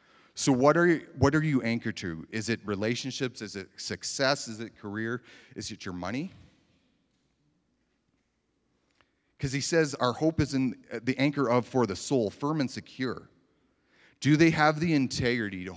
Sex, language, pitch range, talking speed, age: male, English, 95-130 Hz, 170 wpm, 40-59